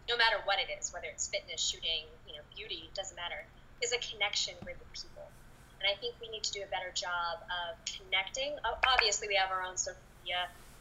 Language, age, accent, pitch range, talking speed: English, 20-39, American, 180-225 Hz, 220 wpm